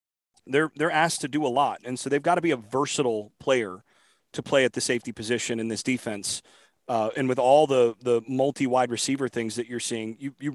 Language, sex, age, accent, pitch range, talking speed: English, male, 30-49, American, 120-145 Hz, 220 wpm